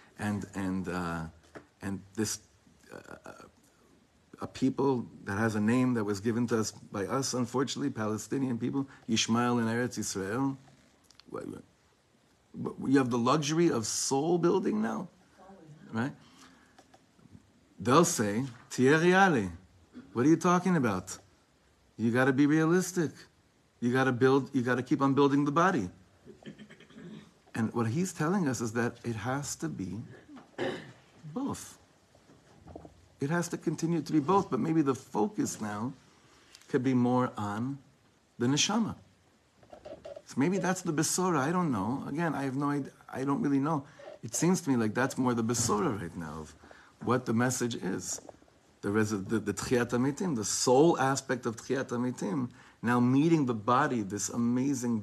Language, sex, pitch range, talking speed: English, male, 110-140 Hz, 155 wpm